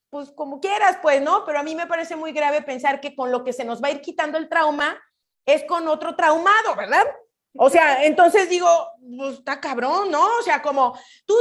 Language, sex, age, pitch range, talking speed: Spanish, female, 30-49, 240-300 Hz, 215 wpm